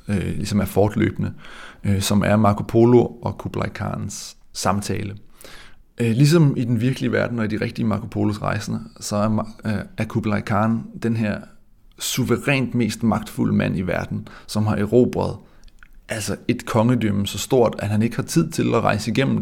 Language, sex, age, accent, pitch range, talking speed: Danish, male, 30-49, native, 105-120 Hz, 160 wpm